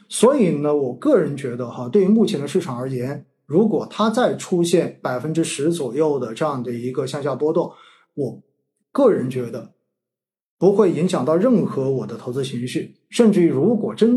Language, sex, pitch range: Chinese, male, 135-190 Hz